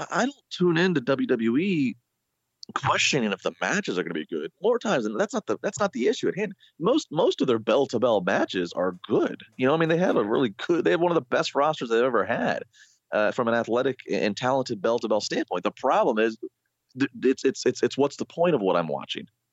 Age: 30-49